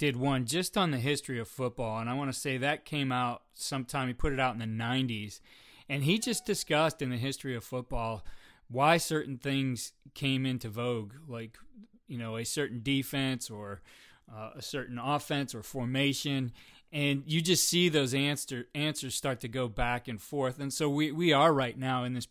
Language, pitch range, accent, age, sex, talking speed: English, 125-145 Hz, American, 30-49, male, 200 wpm